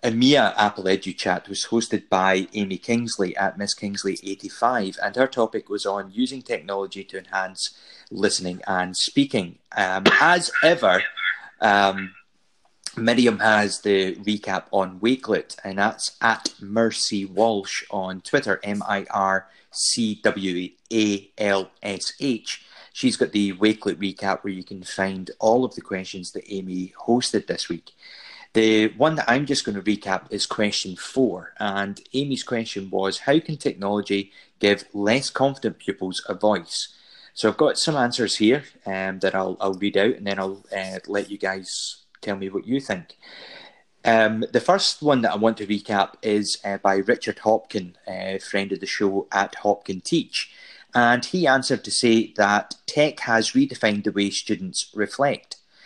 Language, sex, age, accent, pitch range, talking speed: English, male, 30-49, British, 95-110 Hz, 155 wpm